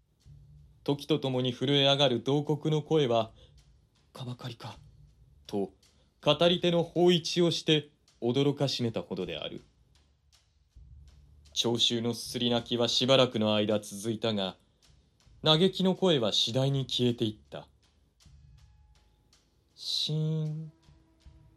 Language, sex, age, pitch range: Japanese, male, 30-49, 115-160 Hz